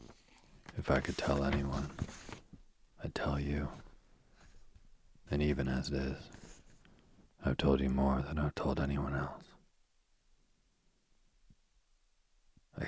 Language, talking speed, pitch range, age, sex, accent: English, 105 wpm, 65-70 Hz, 40-59, male, American